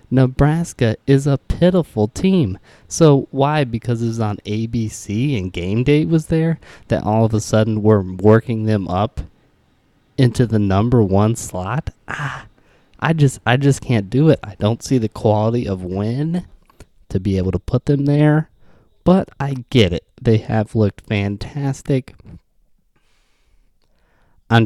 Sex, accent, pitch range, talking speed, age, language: male, American, 95-120 Hz, 150 wpm, 20-39, English